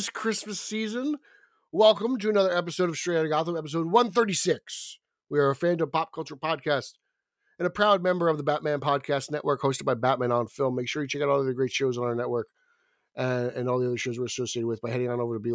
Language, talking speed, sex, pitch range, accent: English, 245 wpm, male, 130-180 Hz, American